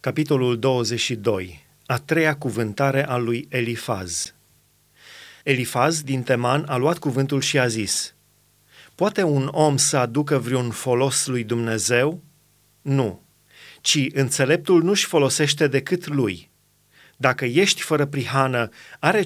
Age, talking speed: 30-49, 120 wpm